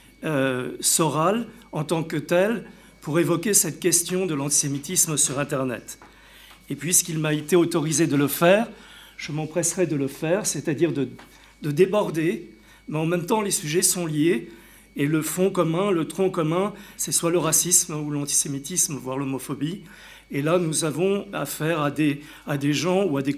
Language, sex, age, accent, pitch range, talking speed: French, male, 50-69, French, 150-180 Hz, 170 wpm